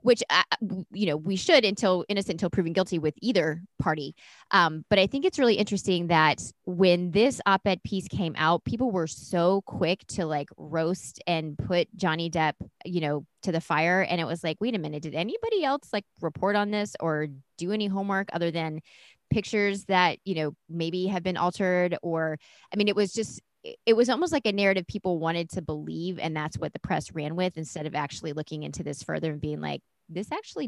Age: 20-39